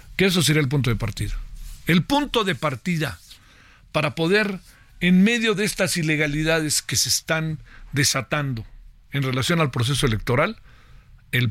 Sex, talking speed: male, 145 wpm